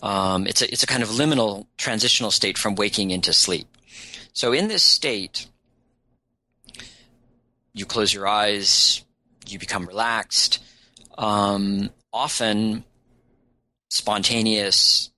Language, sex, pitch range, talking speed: English, male, 105-120 Hz, 110 wpm